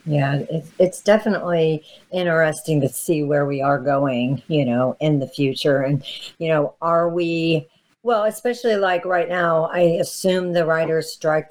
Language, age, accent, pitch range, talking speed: English, 50-69, American, 130-160 Hz, 160 wpm